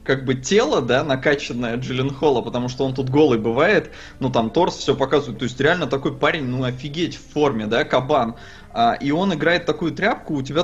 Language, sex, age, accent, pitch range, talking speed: Russian, male, 20-39, native, 130-165 Hz, 205 wpm